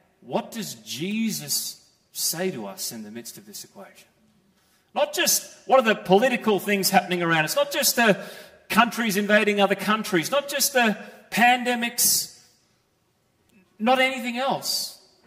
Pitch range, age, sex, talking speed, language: 185-245 Hz, 30-49, male, 140 wpm, English